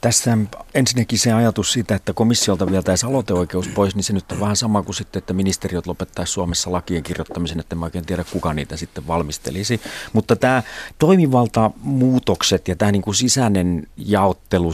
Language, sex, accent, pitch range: Finnish, male, native, 85-105 Hz